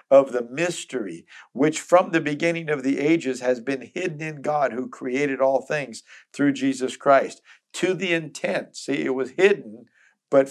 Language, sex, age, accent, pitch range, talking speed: English, male, 50-69, American, 130-160 Hz, 170 wpm